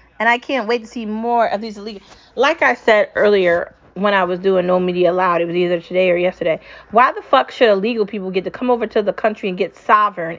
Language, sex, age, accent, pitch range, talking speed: English, female, 30-49, American, 190-235 Hz, 250 wpm